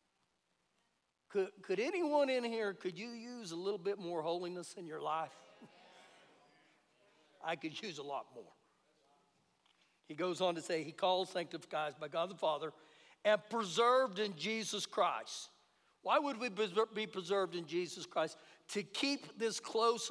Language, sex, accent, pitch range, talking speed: English, male, American, 195-295 Hz, 150 wpm